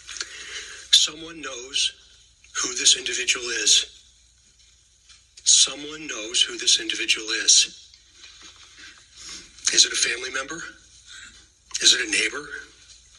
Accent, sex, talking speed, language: American, male, 95 wpm, English